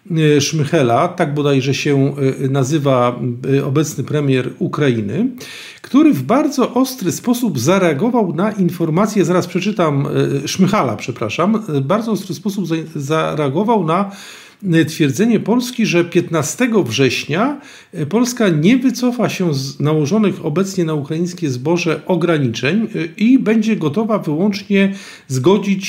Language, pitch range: Polish, 150-210 Hz